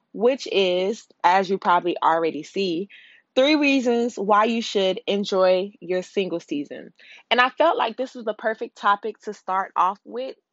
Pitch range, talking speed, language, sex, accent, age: 185-230 Hz, 165 wpm, English, female, American, 20-39